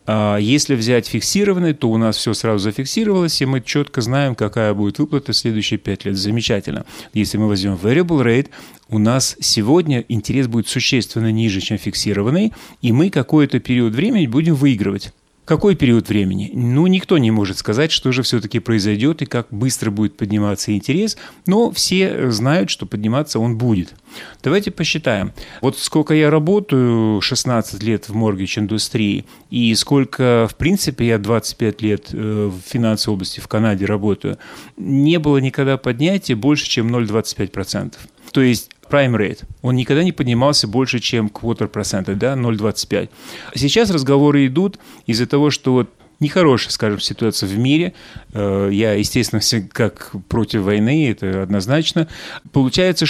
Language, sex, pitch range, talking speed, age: Russian, male, 110-150 Hz, 150 wpm, 30-49